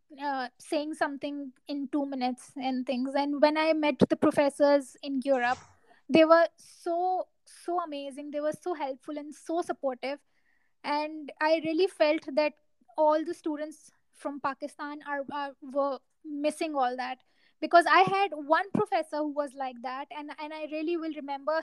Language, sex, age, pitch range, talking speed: Urdu, female, 20-39, 275-315 Hz, 165 wpm